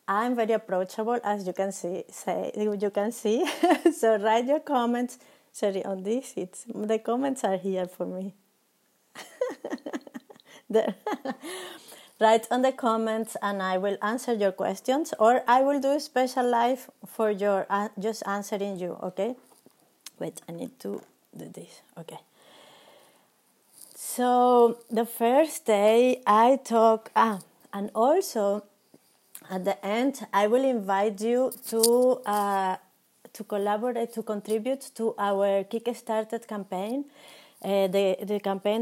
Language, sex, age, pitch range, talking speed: English, female, 30-49, 200-240 Hz, 135 wpm